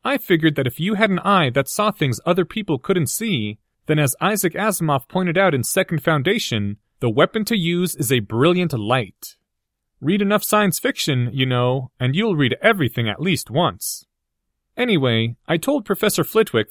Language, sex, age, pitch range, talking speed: English, male, 30-49, 125-195 Hz, 180 wpm